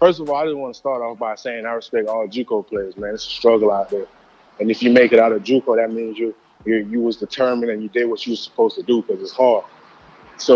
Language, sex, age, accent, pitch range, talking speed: English, male, 20-39, American, 110-135 Hz, 285 wpm